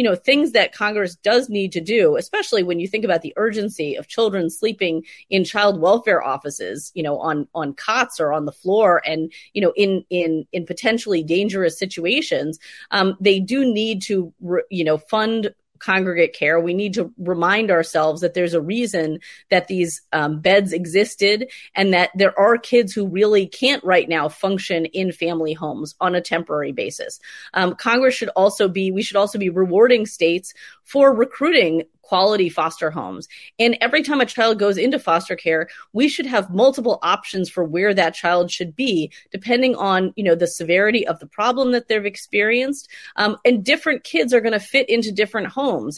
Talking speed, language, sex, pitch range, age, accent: 185 wpm, English, female, 175-220 Hz, 30-49, American